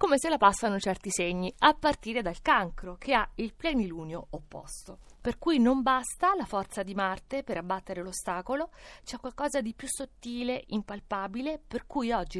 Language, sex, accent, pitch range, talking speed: Italian, female, native, 185-275 Hz, 170 wpm